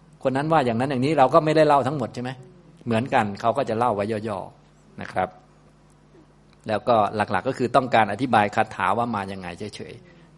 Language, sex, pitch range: Thai, male, 100-120 Hz